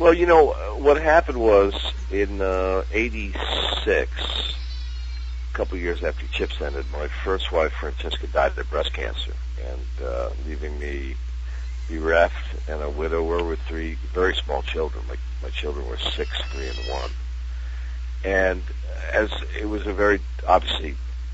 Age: 50-69